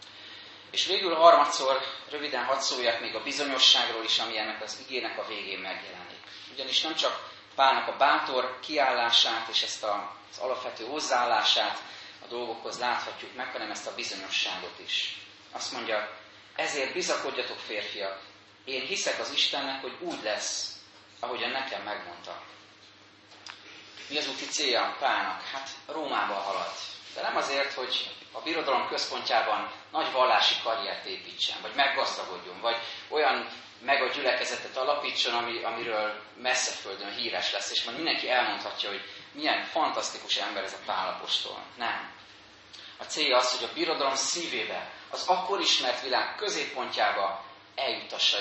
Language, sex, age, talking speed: Hungarian, male, 30-49, 135 wpm